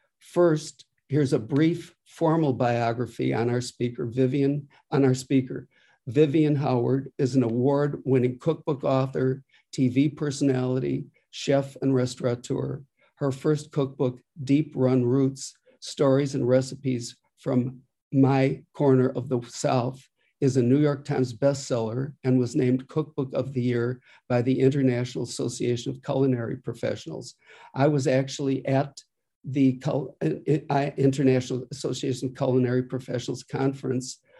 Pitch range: 125-140 Hz